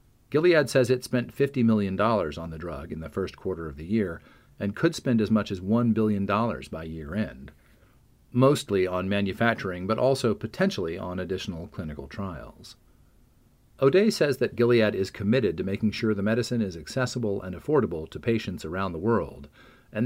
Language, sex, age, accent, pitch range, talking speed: English, male, 40-59, American, 95-125 Hz, 170 wpm